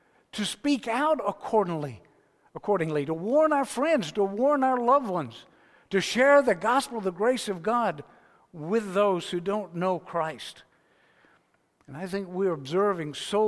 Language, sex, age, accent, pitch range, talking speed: English, male, 60-79, American, 175-230 Hz, 150 wpm